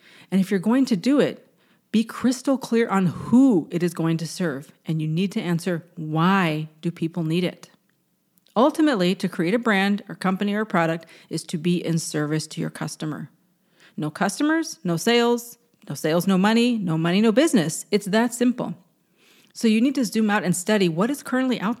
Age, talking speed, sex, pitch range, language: 40-59, 195 wpm, female, 170-220 Hz, English